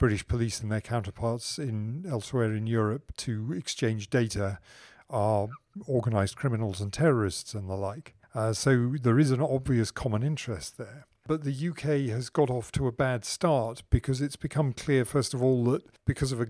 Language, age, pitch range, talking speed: English, 40-59, 110-130 Hz, 180 wpm